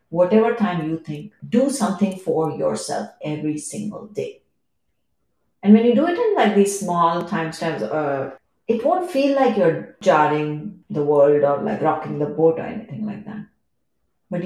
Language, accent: English, Indian